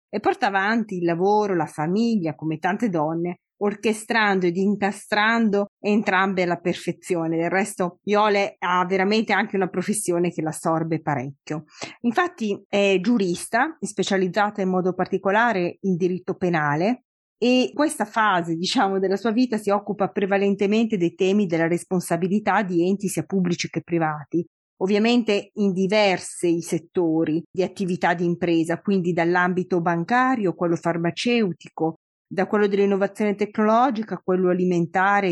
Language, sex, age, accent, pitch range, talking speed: Italian, female, 30-49, native, 170-210 Hz, 135 wpm